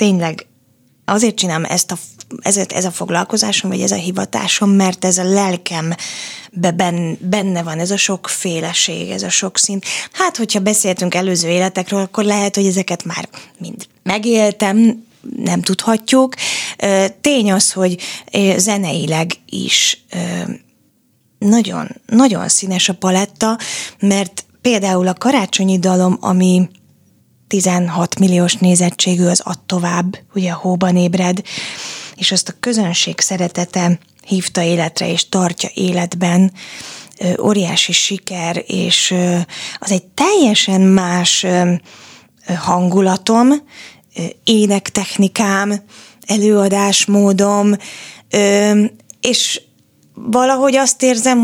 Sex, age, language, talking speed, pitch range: female, 20-39, Hungarian, 105 wpm, 180-210 Hz